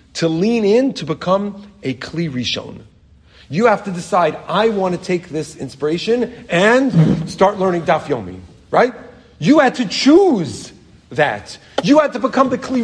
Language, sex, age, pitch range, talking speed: English, male, 40-59, 145-225 Hz, 160 wpm